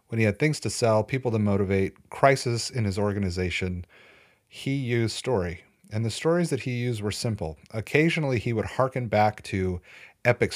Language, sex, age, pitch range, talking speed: English, male, 30-49, 100-125 Hz, 175 wpm